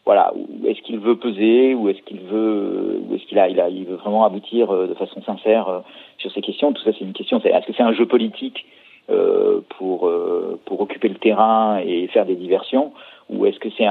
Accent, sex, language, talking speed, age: French, male, French, 235 wpm, 50-69